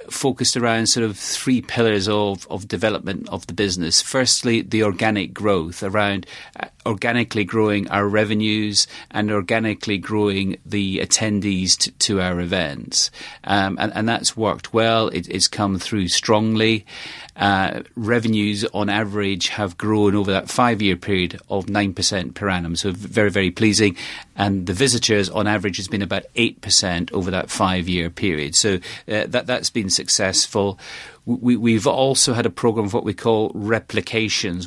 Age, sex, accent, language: 40-59, male, British, English